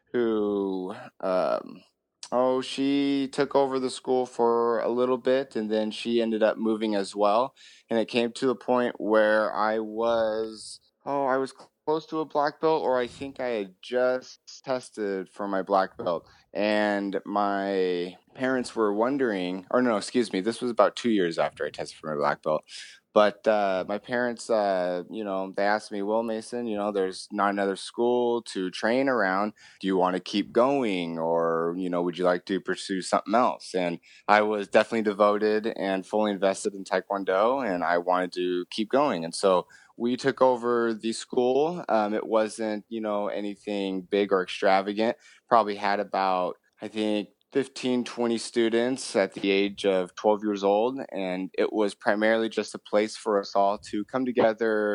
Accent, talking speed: American, 180 wpm